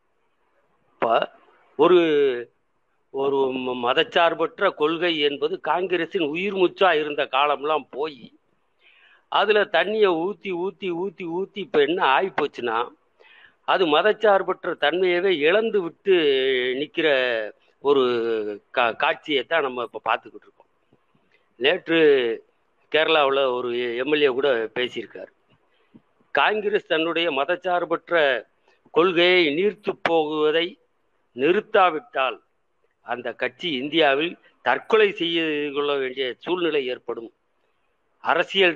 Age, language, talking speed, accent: 50-69, Tamil, 90 wpm, native